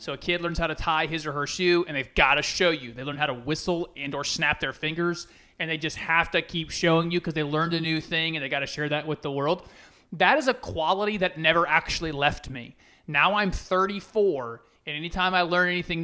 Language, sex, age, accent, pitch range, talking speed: English, male, 30-49, American, 150-190 Hz, 250 wpm